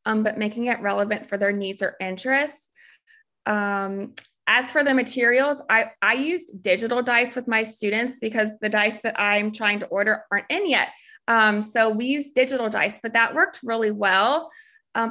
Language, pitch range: English, 205-240 Hz